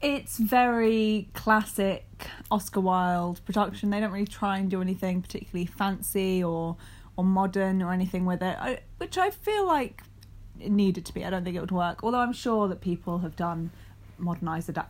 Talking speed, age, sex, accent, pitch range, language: 175 wpm, 10-29, female, British, 180-230 Hz, English